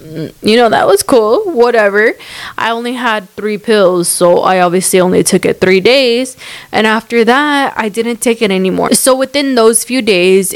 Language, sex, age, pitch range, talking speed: English, female, 20-39, 185-235 Hz, 180 wpm